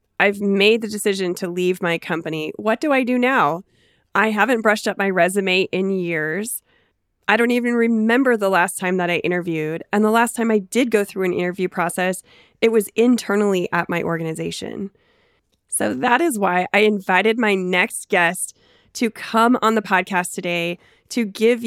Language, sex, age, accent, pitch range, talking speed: English, female, 20-39, American, 175-215 Hz, 180 wpm